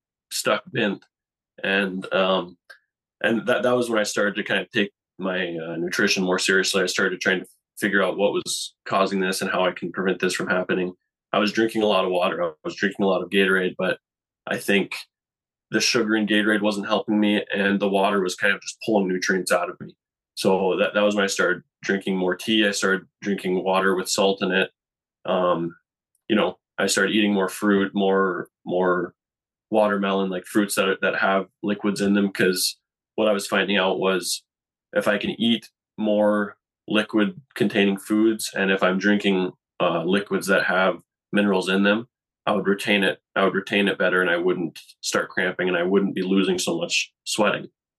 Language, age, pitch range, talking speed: English, 20-39, 95-105 Hz, 200 wpm